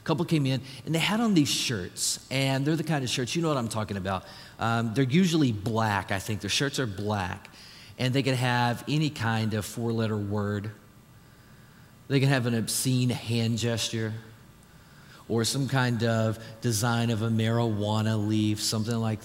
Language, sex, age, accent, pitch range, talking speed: English, male, 40-59, American, 110-140 Hz, 185 wpm